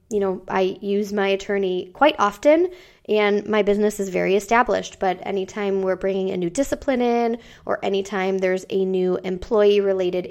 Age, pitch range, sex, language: 20-39, 190-215 Hz, female, English